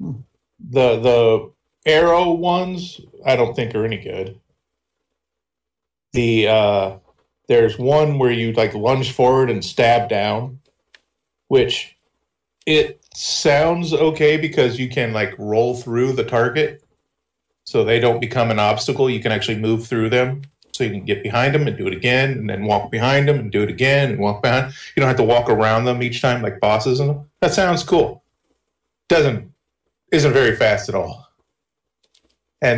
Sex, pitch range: male, 105-130 Hz